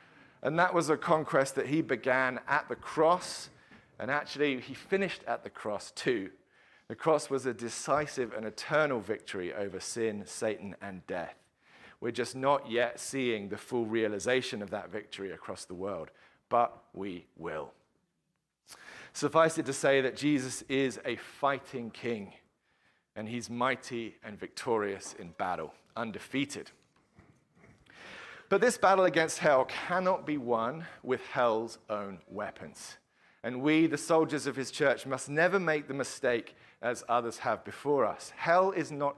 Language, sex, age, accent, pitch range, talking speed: English, male, 40-59, British, 115-150 Hz, 150 wpm